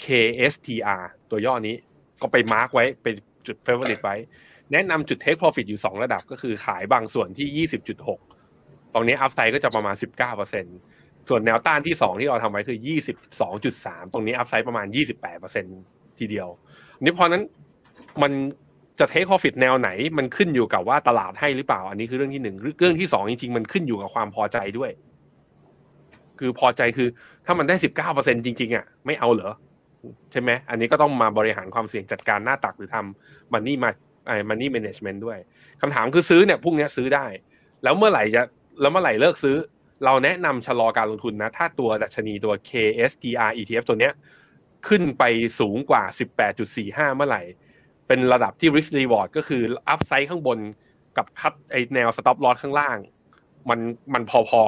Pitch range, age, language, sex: 110-140 Hz, 20-39, Thai, male